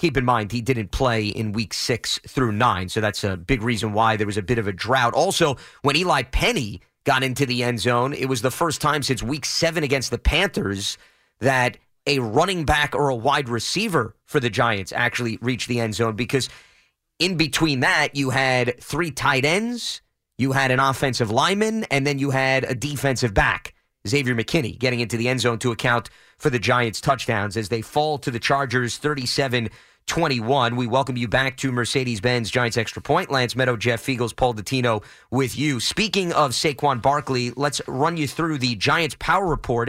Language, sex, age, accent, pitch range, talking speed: English, male, 30-49, American, 120-145 Hz, 200 wpm